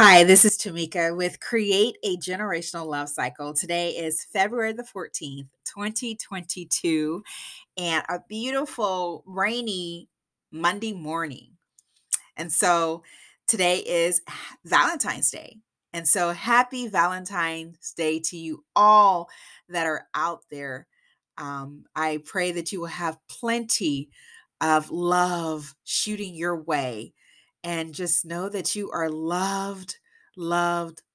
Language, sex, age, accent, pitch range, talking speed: English, female, 30-49, American, 165-205 Hz, 120 wpm